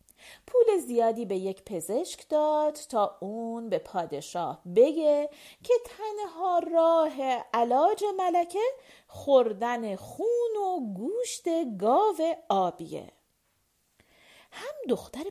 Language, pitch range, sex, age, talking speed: Persian, 220-355 Hz, female, 40-59, 95 wpm